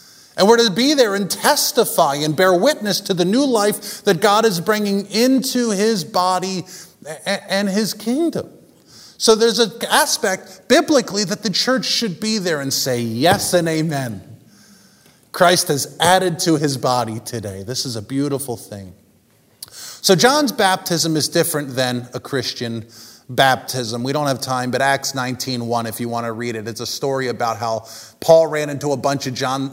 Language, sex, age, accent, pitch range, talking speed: English, male, 30-49, American, 130-200 Hz, 175 wpm